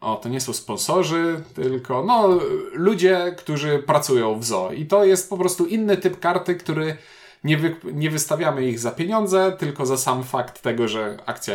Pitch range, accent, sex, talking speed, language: 125-175 Hz, native, male, 170 wpm, Polish